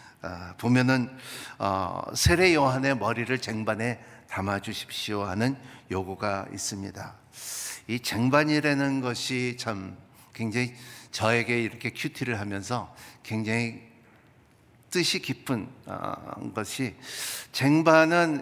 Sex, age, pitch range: male, 60-79, 110-145 Hz